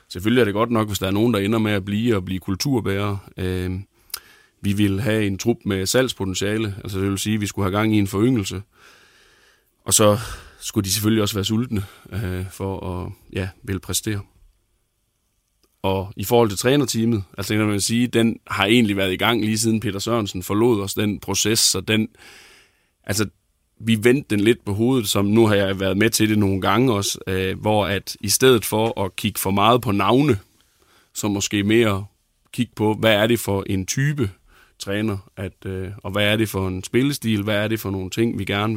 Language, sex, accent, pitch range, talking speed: Danish, male, native, 95-110 Hz, 205 wpm